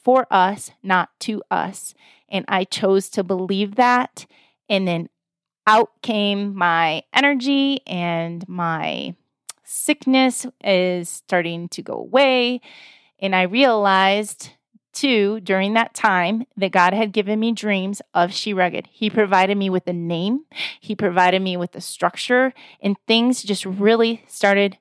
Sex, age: female, 30-49